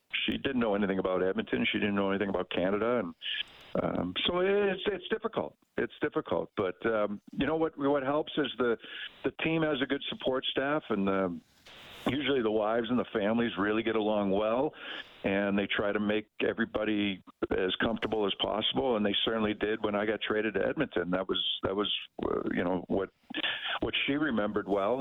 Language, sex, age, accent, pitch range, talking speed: English, male, 50-69, American, 100-135 Hz, 190 wpm